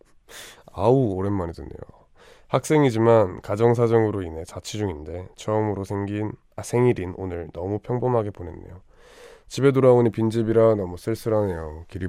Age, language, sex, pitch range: 20-39, Korean, male, 90-110 Hz